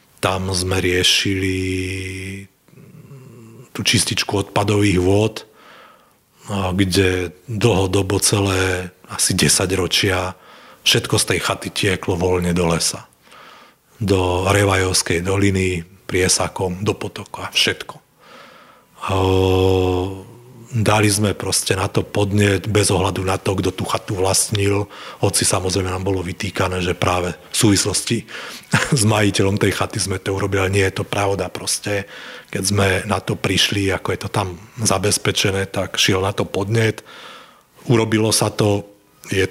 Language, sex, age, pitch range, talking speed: Slovak, male, 40-59, 95-110 Hz, 130 wpm